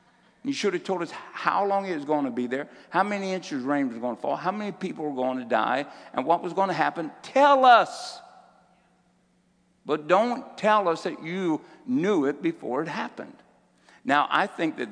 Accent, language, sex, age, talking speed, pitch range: American, English, male, 60-79, 210 wpm, 120-195 Hz